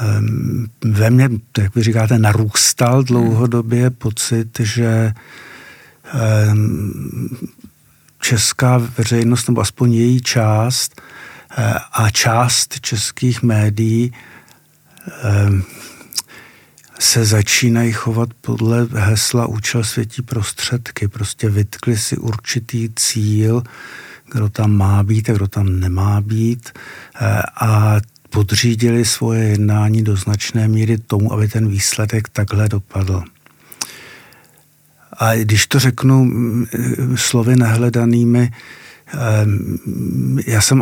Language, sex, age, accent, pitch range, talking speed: Czech, male, 60-79, native, 110-120 Hz, 90 wpm